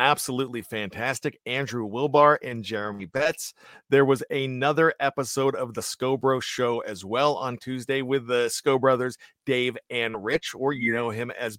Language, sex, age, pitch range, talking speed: English, male, 40-59, 125-145 Hz, 160 wpm